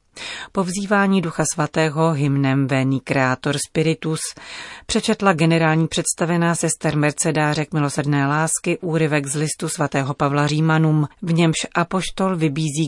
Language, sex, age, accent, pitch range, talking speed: Czech, female, 40-59, native, 140-165 Hz, 115 wpm